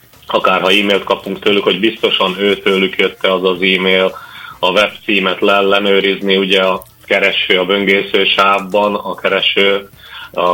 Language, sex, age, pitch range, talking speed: Hungarian, male, 30-49, 95-100 Hz, 140 wpm